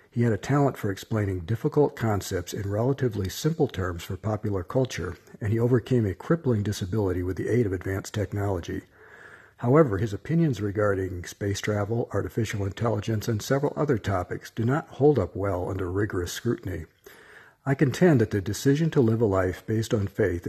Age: 60-79